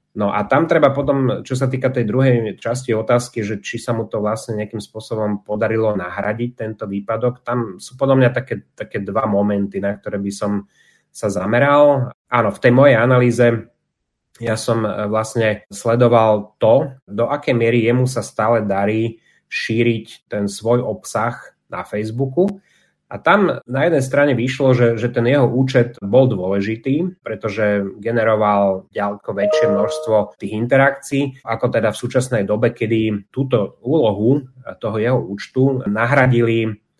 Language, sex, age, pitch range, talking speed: Slovak, male, 30-49, 105-125 Hz, 150 wpm